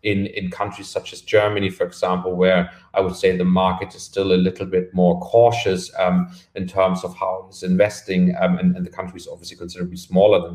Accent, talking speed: German, 215 wpm